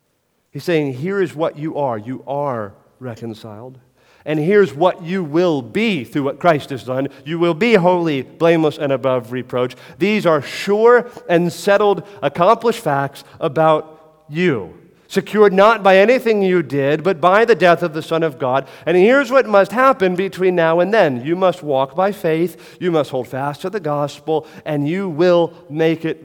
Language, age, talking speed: English, 40-59, 180 wpm